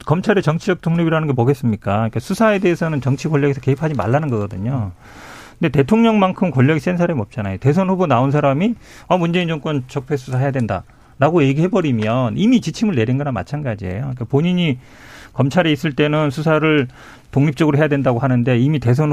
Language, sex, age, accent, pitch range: Korean, male, 40-59, native, 125-170 Hz